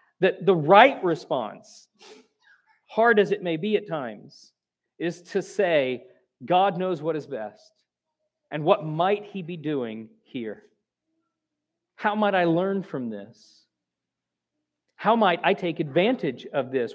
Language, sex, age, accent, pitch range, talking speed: English, male, 40-59, American, 160-205 Hz, 140 wpm